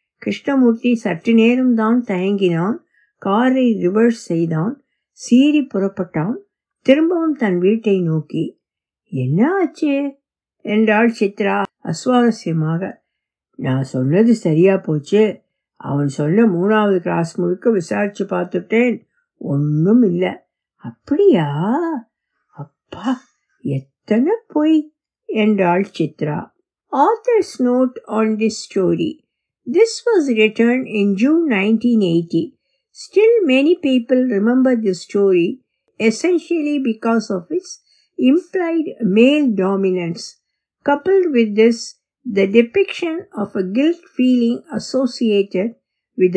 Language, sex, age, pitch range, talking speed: Tamil, female, 60-79, 190-270 Hz, 60 wpm